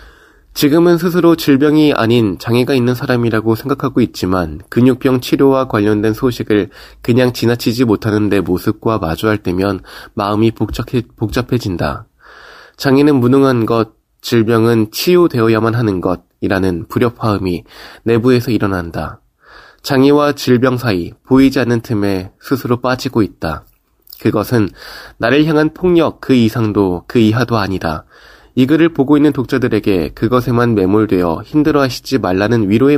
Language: Korean